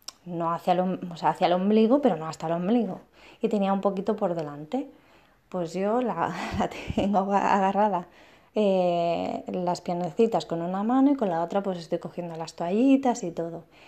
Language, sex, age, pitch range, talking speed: Spanish, female, 20-39, 180-255 Hz, 180 wpm